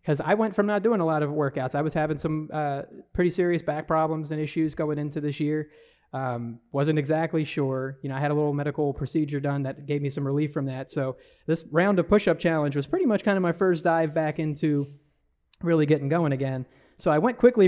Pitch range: 140-170 Hz